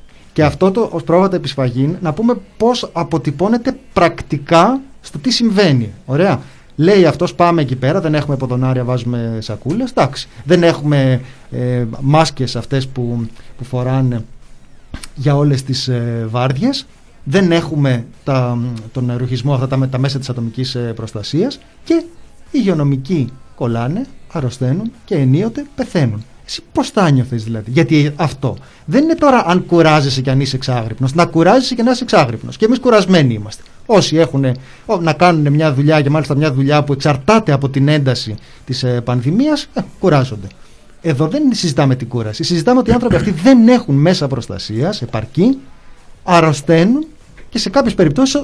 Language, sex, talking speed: Greek, male, 150 wpm